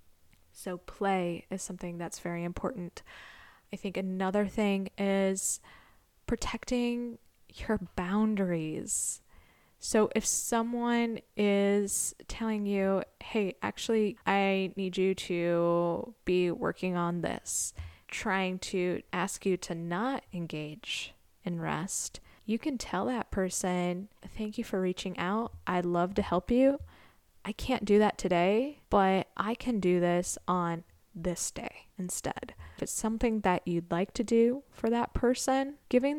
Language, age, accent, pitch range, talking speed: English, 10-29, American, 175-215 Hz, 135 wpm